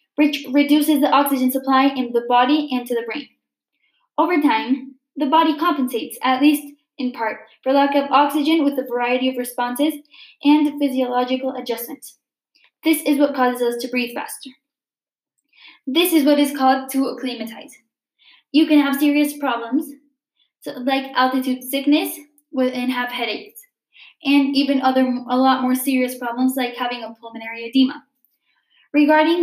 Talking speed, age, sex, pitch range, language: 150 wpm, 10-29, female, 250-290 Hz, Spanish